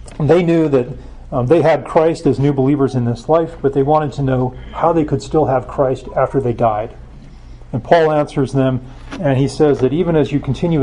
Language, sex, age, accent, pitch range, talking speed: English, male, 40-59, American, 120-140 Hz, 215 wpm